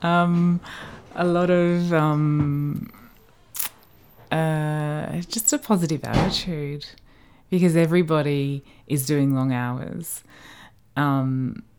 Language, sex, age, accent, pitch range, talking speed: English, female, 20-39, Australian, 125-150 Hz, 85 wpm